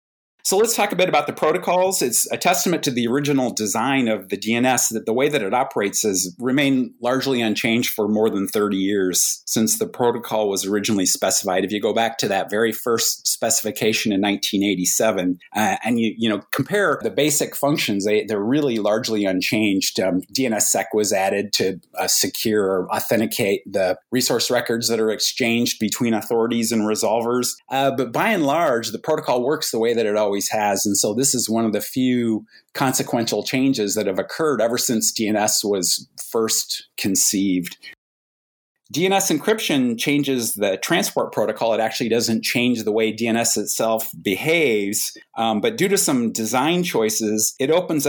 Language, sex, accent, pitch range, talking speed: English, male, American, 105-130 Hz, 175 wpm